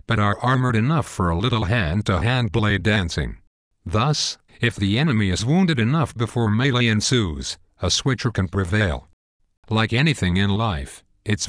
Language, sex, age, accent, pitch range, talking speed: English, male, 50-69, American, 95-125 Hz, 150 wpm